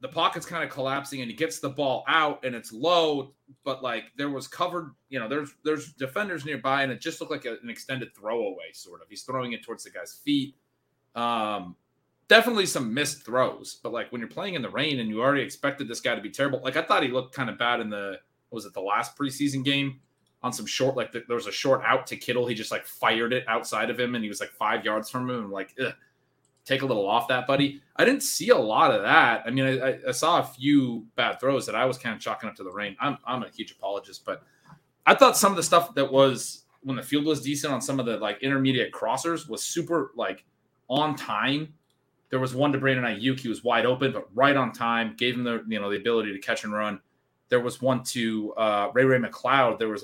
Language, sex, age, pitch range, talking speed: English, male, 30-49, 115-145 Hz, 260 wpm